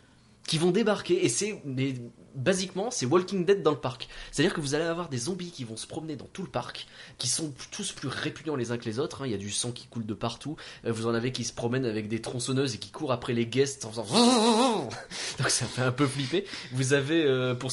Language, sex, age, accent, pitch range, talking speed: French, male, 20-39, French, 120-150 Hz, 265 wpm